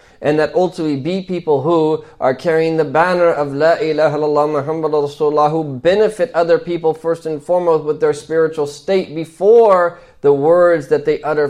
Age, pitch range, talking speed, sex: 30-49, 150-180 Hz, 160 wpm, male